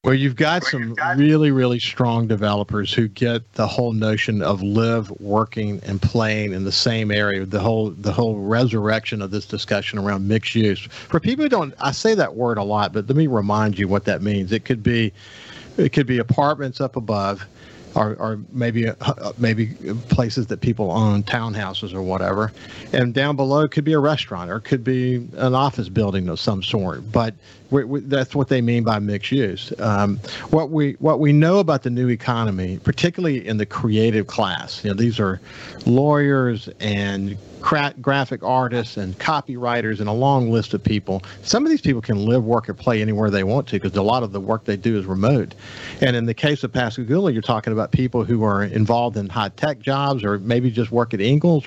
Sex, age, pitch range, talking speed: male, 50-69, 105-135 Hz, 205 wpm